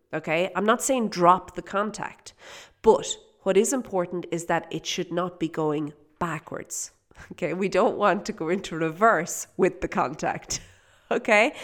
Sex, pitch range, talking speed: female, 175-235 Hz, 160 wpm